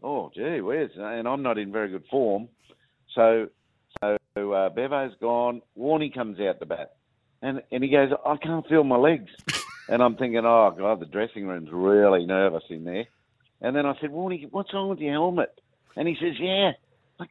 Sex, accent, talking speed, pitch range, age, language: male, Australian, 195 wpm, 115-155 Hz, 50-69, English